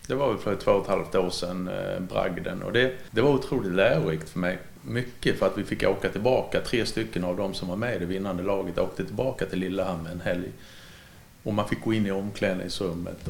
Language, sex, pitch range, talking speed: Swedish, male, 95-125 Hz, 225 wpm